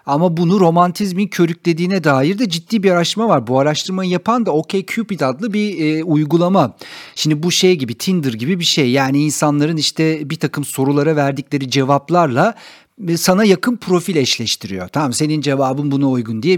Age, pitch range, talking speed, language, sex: 50-69, 145-220 Hz, 165 wpm, Turkish, male